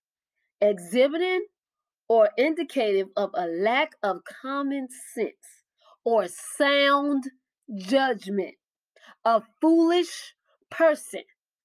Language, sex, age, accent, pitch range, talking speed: English, female, 20-39, American, 230-310 Hz, 75 wpm